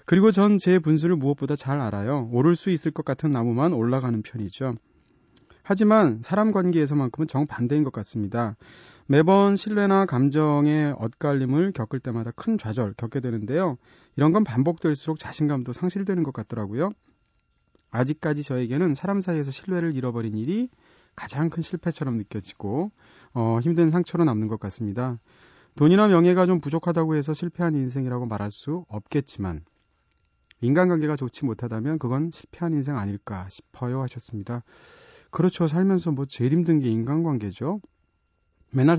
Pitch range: 115-165 Hz